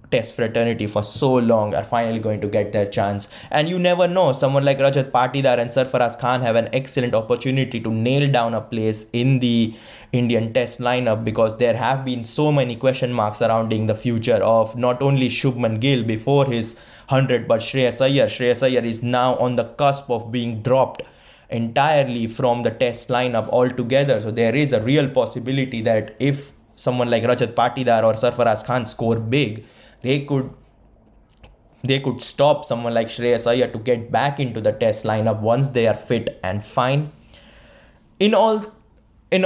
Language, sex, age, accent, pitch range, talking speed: English, male, 20-39, Indian, 115-140 Hz, 175 wpm